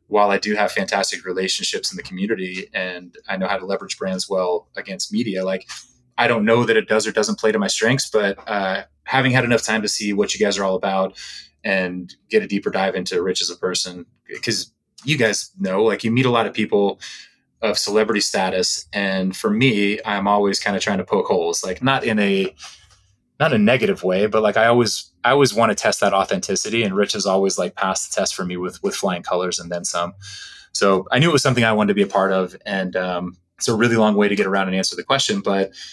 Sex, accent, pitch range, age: male, American, 95-120 Hz, 20-39